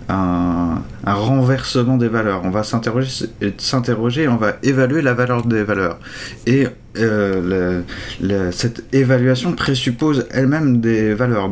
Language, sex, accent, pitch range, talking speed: French, male, French, 100-125 Hz, 145 wpm